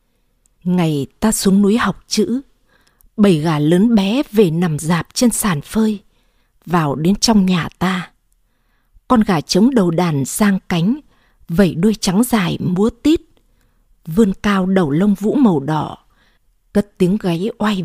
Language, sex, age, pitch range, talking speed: Vietnamese, female, 20-39, 175-220 Hz, 150 wpm